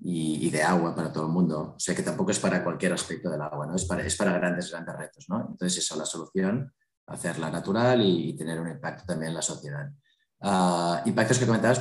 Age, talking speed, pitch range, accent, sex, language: 30-49, 235 wpm, 85-100 Hz, Spanish, male, Spanish